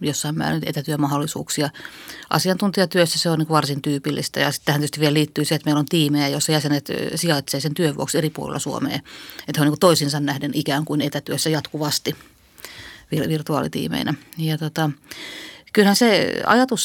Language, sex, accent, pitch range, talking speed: Finnish, female, native, 145-170 Hz, 165 wpm